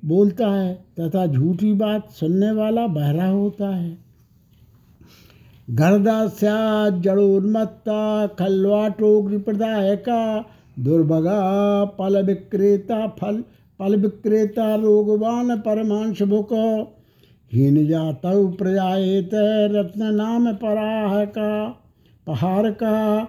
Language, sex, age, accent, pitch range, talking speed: Hindi, male, 60-79, native, 190-215 Hz, 80 wpm